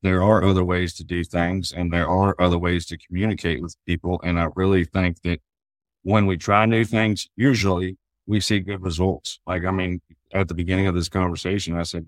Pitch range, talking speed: 90-100 Hz, 210 wpm